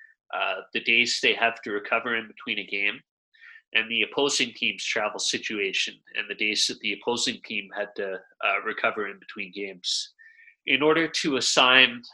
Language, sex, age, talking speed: English, male, 30-49, 175 wpm